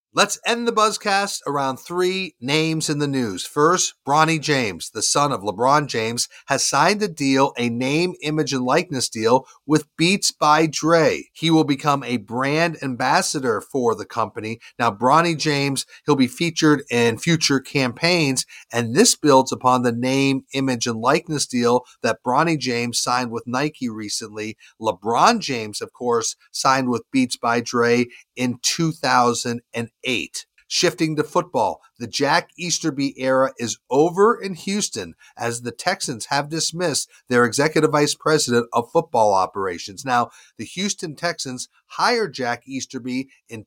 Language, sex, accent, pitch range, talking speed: English, male, American, 120-165 Hz, 150 wpm